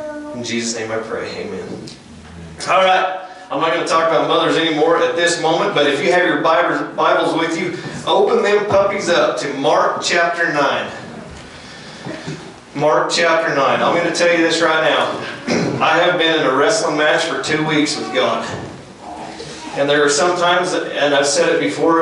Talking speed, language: 185 wpm, English